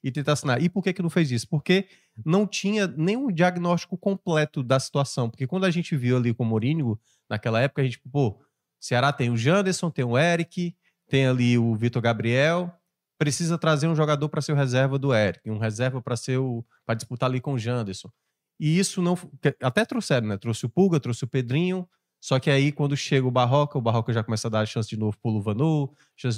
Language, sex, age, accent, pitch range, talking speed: Portuguese, male, 20-39, Brazilian, 120-165 Hz, 220 wpm